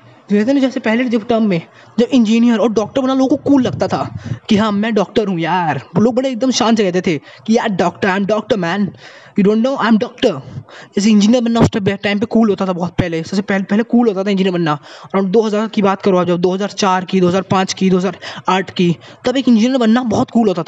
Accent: native